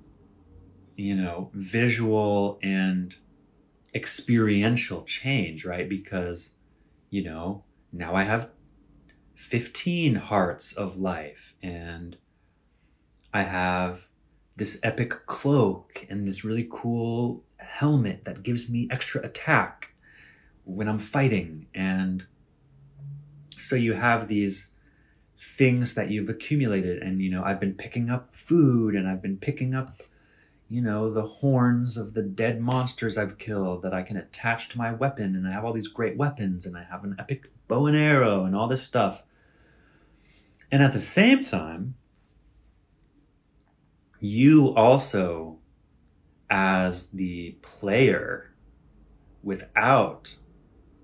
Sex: male